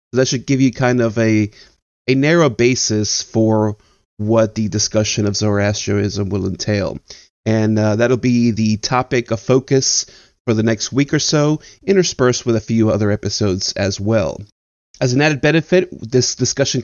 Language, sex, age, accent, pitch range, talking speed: English, male, 30-49, American, 110-130 Hz, 165 wpm